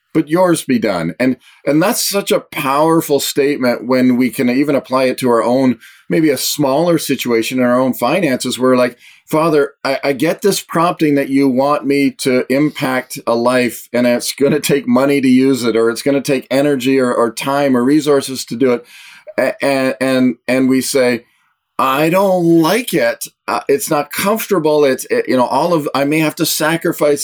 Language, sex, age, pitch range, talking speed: English, male, 40-59, 125-145 Hz, 205 wpm